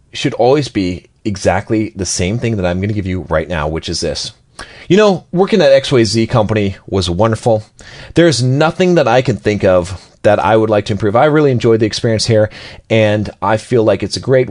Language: English